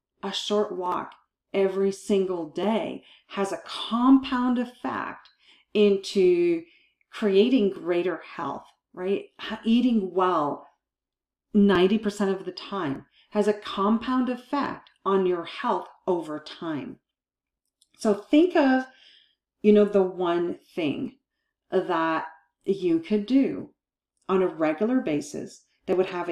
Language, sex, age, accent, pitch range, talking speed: English, female, 40-59, American, 185-255 Hz, 110 wpm